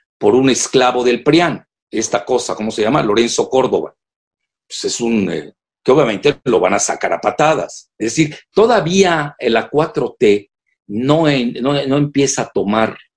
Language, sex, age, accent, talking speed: Spanish, male, 50-69, Mexican, 165 wpm